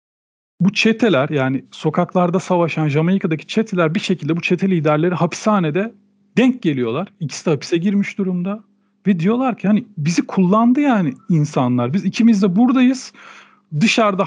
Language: Turkish